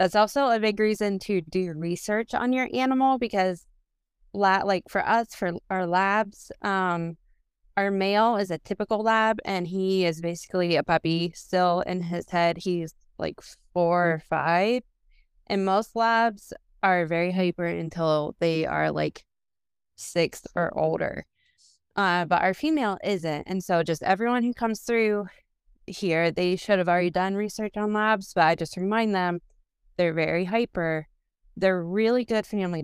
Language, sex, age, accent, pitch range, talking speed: English, female, 20-39, American, 165-200 Hz, 155 wpm